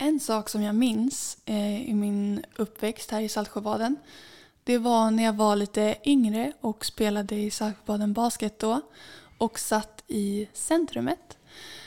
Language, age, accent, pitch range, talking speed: Swedish, 10-29, native, 215-240 Hz, 140 wpm